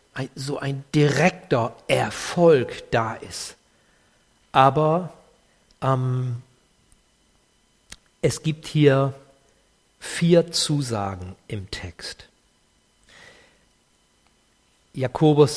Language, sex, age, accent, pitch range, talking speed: German, male, 50-69, German, 125-160 Hz, 60 wpm